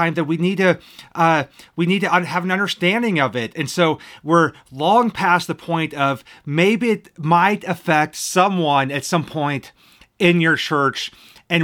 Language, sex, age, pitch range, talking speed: English, male, 30-49, 150-185 Hz, 170 wpm